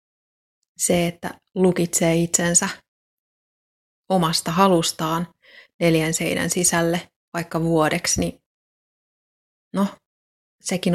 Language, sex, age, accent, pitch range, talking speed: Finnish, female, 30-49, native, 160-185 Hz, 75 wpm